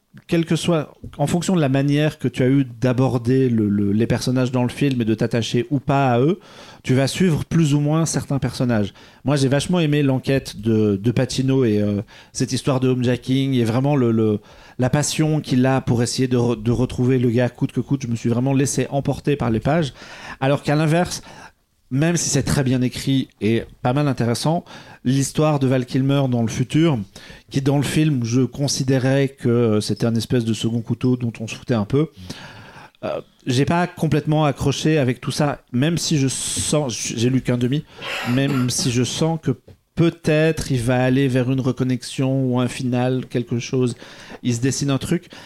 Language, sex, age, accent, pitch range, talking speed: French, male, 40-59, French, 125-145 Hz, 205 wpm